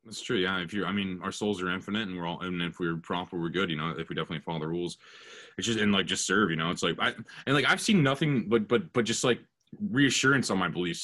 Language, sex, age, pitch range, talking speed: English, male, 20-39, 105-140 Hz, 295 wpm